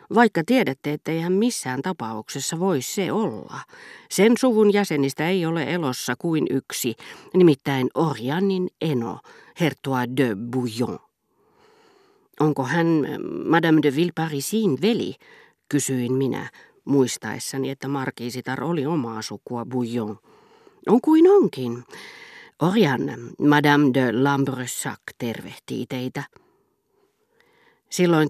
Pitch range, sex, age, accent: 125-170 Hz, female, 40-59, native